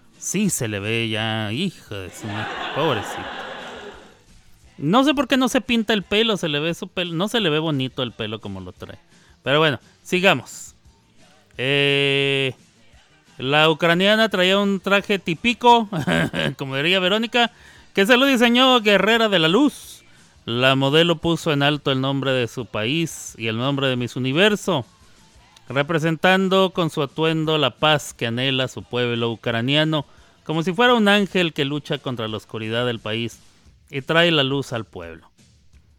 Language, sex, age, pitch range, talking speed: Spanish, male, 30-49, 120-175 Hz, 165 wpm